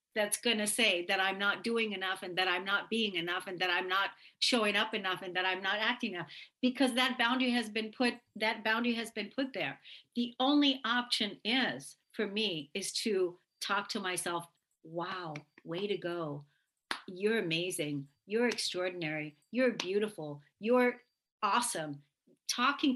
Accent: American